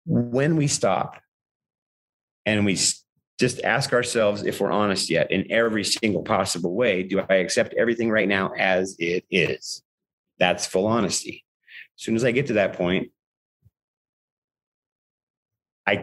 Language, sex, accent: English, male, American